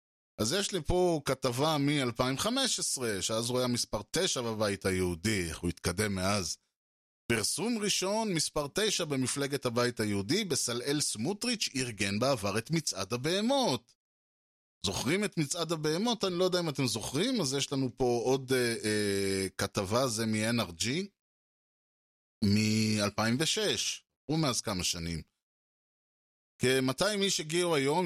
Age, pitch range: 20-39, 105-150 Hz